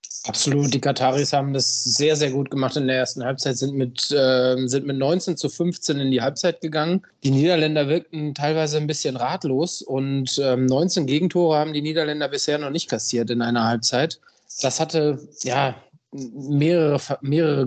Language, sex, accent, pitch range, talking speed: German, male, German, 140-170 Hz, 175 wpm